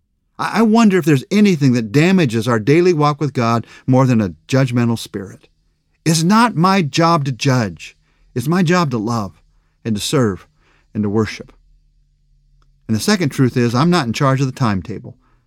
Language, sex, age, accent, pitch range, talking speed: English, male, 50-69, American, 105-160 Hz, 180 wpm